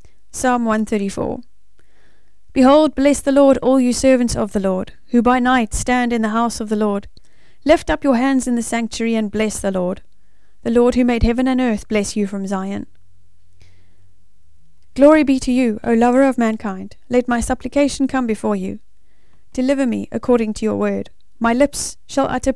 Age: 30-49